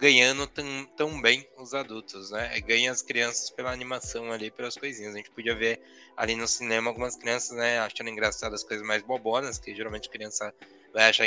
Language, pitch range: Portuguese, 115-155 Hz